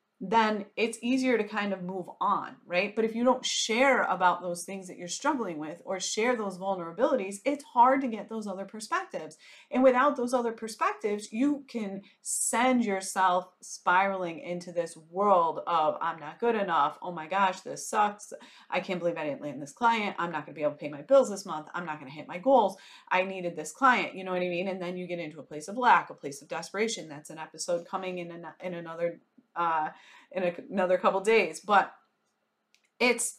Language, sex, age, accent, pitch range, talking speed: English, female, 30-49, American, 180-235 Hz, 210 wpm